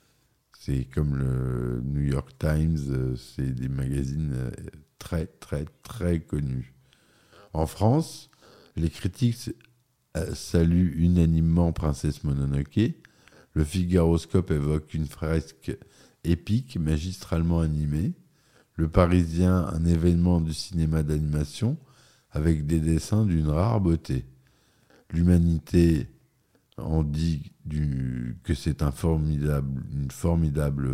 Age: 50-69